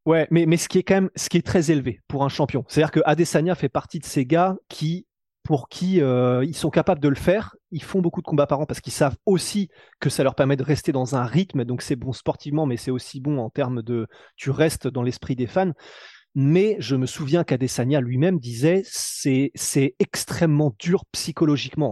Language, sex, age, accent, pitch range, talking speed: French, male, 30-49, French, 135-180 Hz, 235 wpm